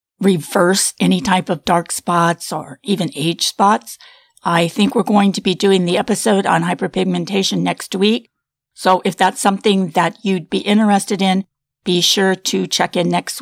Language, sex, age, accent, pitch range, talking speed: English, female, 50-69, American, 190-235 Hz, 170 wpm